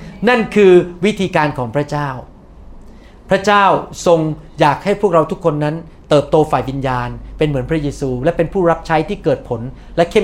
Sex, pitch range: male, 135-180 Hz